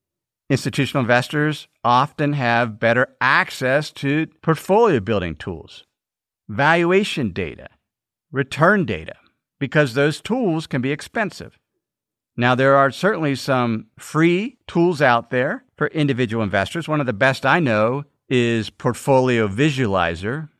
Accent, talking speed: American, 120 wpm